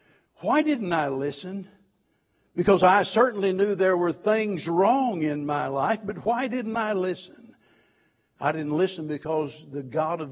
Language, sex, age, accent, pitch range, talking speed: English, male, 60-79, American, 150-185 Hz, 155 wpm